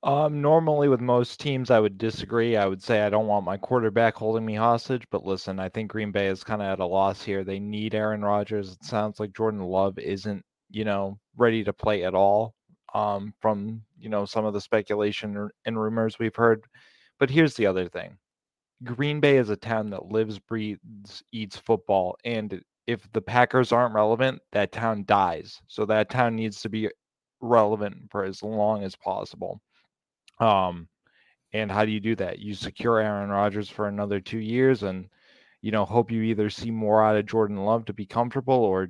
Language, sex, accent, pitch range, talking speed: English, male, American, 100-115 Hz, 195 wpm